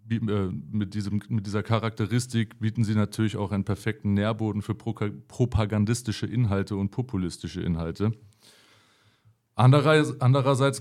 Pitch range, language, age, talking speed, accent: 100-115 Hz, English, 30-49, 110 wpm, German